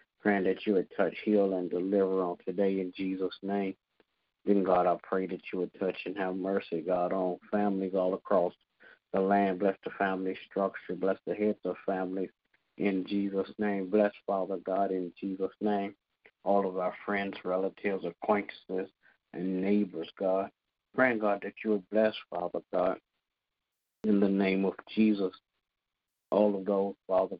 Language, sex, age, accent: English, male, 50-69, American